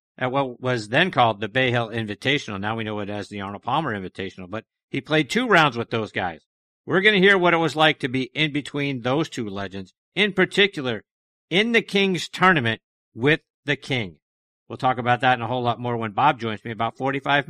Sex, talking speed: male, 225 wpm